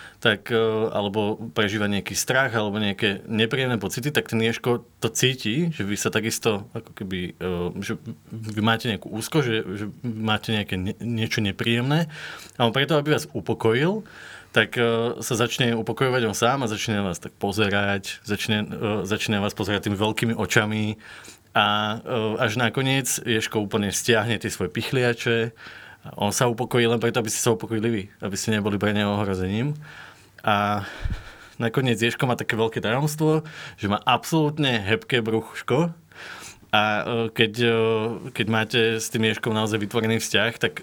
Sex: male